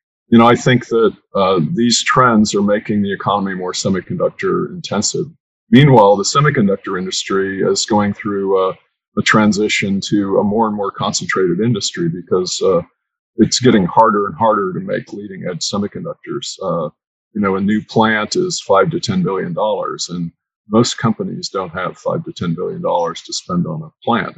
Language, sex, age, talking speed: English, male, 50-69, 170 wpm